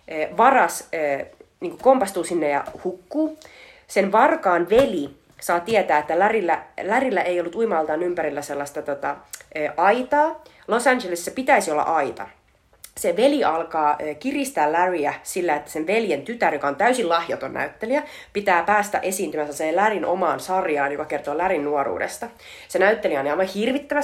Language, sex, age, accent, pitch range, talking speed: Finnish, female, 30-49, native, 155-215 Hz, 135 wpm